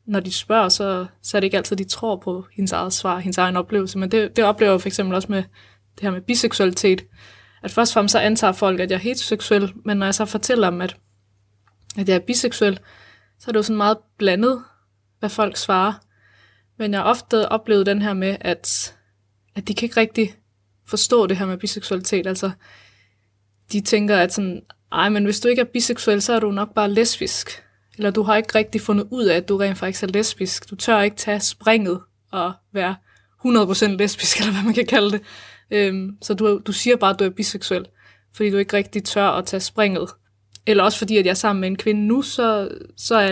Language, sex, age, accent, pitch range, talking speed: Danish, female, 20-39, native, 185-215 Hz, 220 wpm